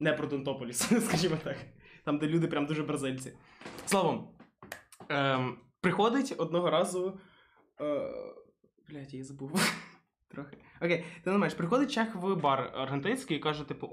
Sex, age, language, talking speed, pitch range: male, 20-39, Ukrainian, 145 wpm, 150-255 Hz